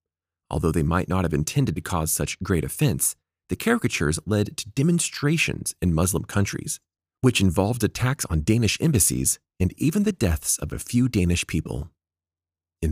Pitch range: 85-120 Hz